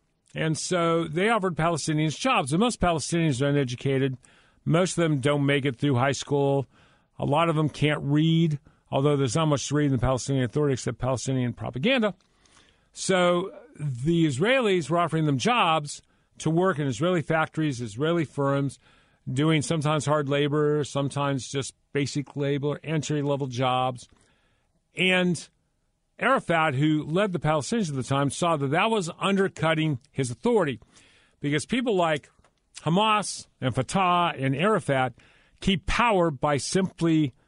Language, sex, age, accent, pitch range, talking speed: English, male, 50-69, American, 135-170 Hz, 145 wpm